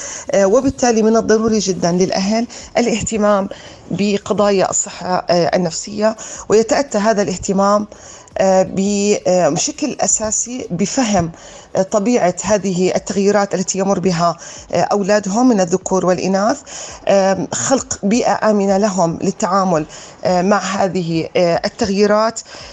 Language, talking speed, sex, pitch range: Arabic, 85 wpm, female, 185-220 Hz